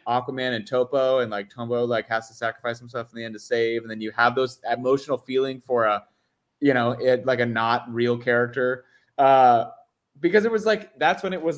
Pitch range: 105-130 Hz